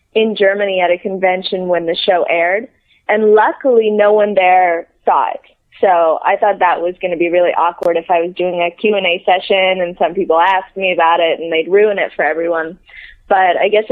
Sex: female